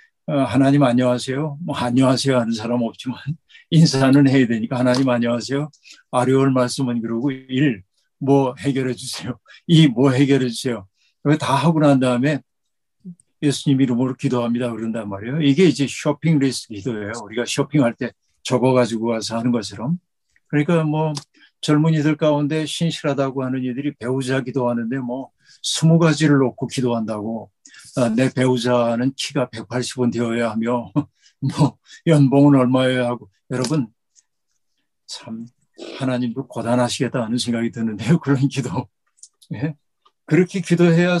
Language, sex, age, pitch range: Korean, male, 50-69, 120-150 Hz